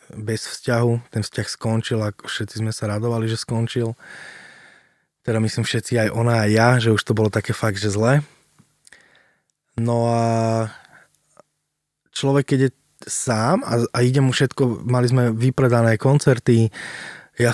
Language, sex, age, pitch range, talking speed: Slovak, male, 20-39, 110-125 Hz, 145 wpm